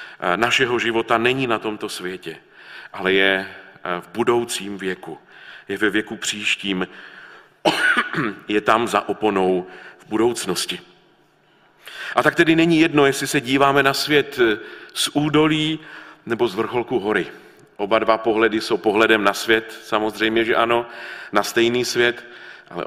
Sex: male